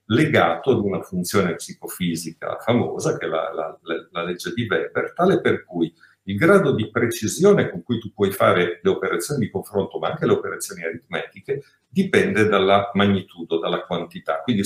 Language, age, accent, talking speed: Italian, 50-69, native, 170 wpm